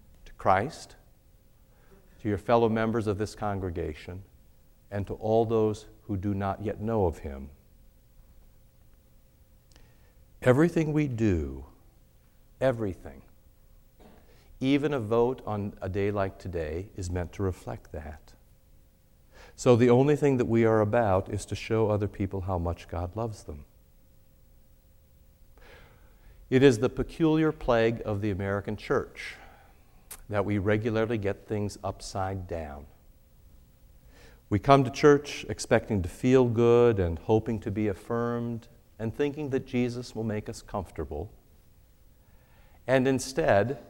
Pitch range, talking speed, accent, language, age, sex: 95-130 Hz, 125 wpm, American, English, 50-69, male